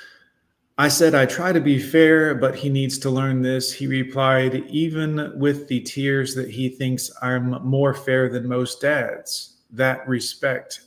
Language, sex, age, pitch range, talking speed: English, male, 30-49, 125-145 Hz, 165 wpm